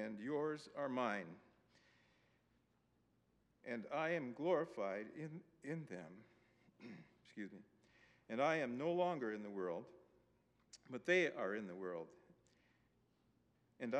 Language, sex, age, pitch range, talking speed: English, male, 50-69, 110-145 Hz, 120 wpm